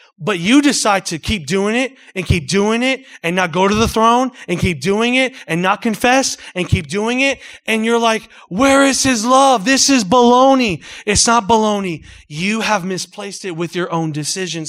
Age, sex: 30-49, male